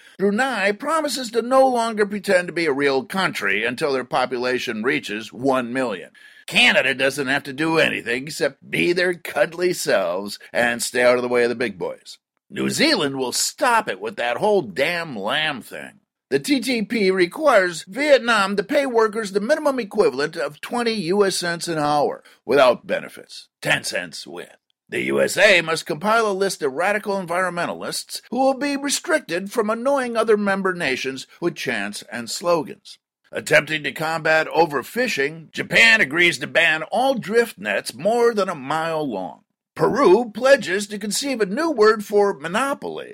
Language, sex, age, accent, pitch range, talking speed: English, male, 50-69, American, 150-235 Hz, 165 wpm